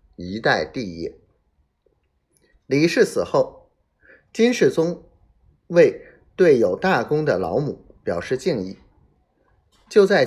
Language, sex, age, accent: Chinese, male, 30-49, native